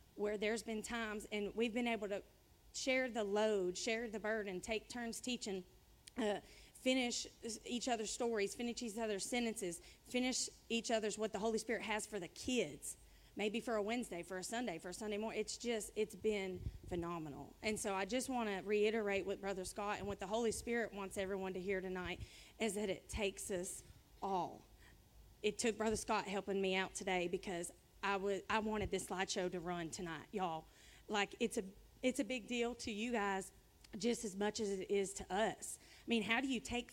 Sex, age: female, 30-49